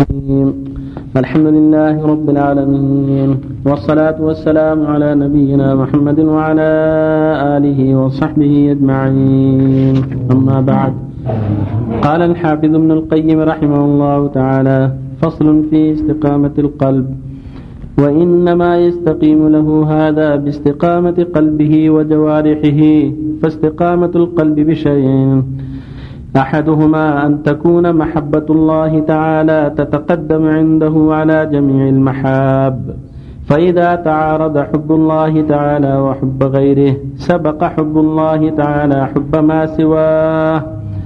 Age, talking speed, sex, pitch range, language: 50-69, 90 wpm, male, 135-155 Hz, Arabic